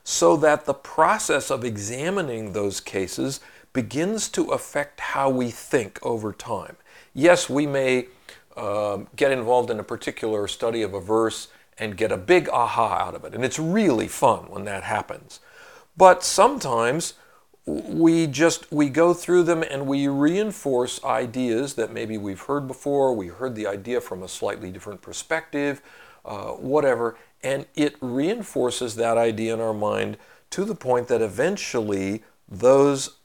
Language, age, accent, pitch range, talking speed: English, 50-69, American, 110-140 Hz, 155 wpm